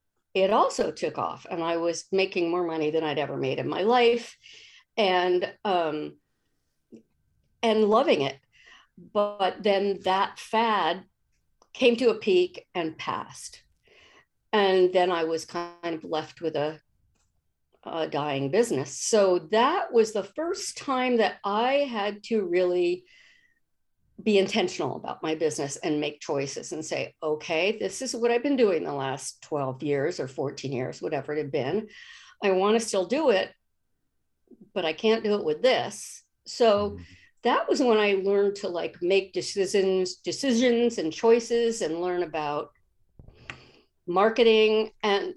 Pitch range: 170-225 Hz